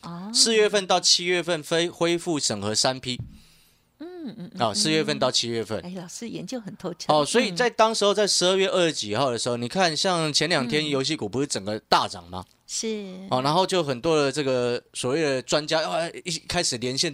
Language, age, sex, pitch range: Chinese, 30-49, male, 125-175 Hz